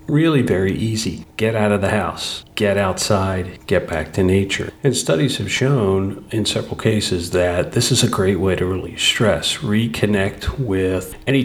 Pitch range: 95-130 Hz